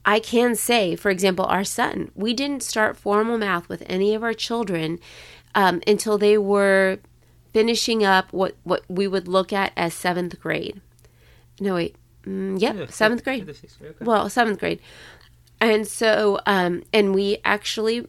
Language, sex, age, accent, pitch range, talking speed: English, female, 30-49, American, 185-220 Hz, 155 wpm